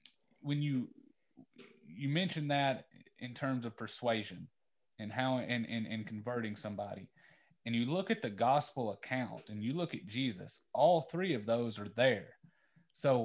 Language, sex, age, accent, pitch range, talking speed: English, male, 30-49, American, 110-140 Hz, 160 wpm